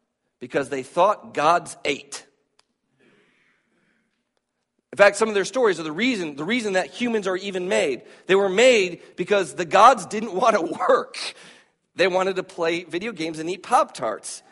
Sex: male